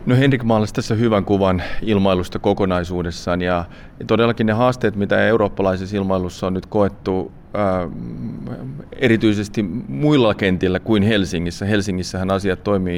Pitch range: 95-110 Hz